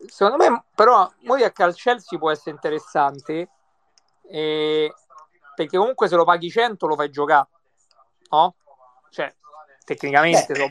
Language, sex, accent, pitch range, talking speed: Italian, male, native, 155-195 Hz, 120 wpm